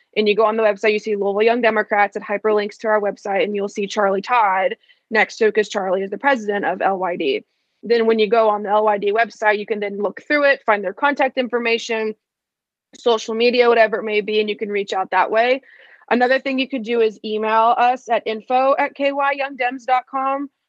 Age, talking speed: 20-39, 215 wpm